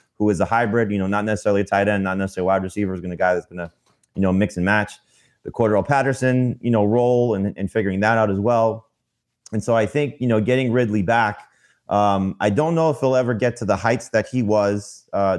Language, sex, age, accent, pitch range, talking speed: English, male, 30-49, American, 95-115 Hz, 250 wpm